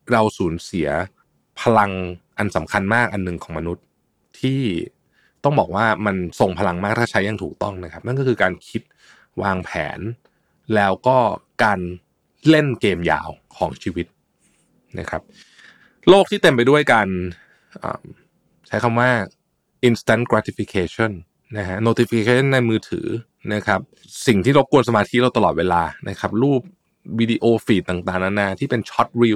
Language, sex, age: Thai, male, 20-39